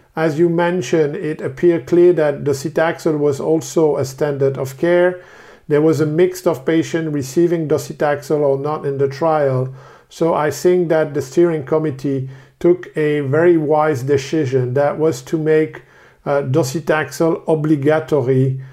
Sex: male